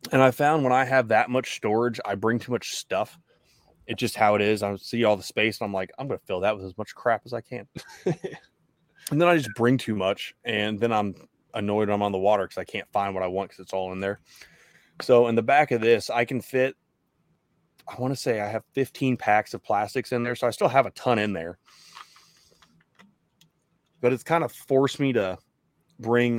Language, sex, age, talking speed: English, male, 20-39, 235 wpm